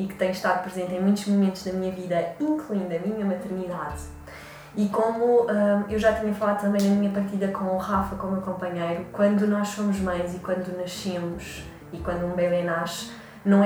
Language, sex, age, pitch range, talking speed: Portuguese, female, 20-39, 185-210 Hz, 195 wpm